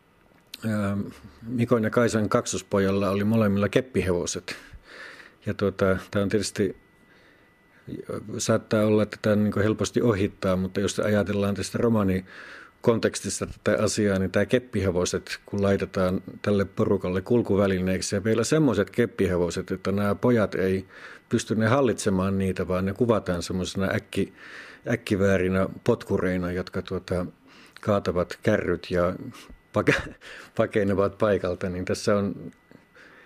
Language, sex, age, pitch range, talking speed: Finnish, male, 50-69, 95-105 Hz, 115 wpm